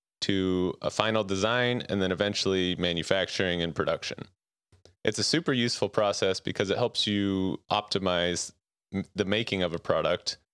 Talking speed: 140 wpm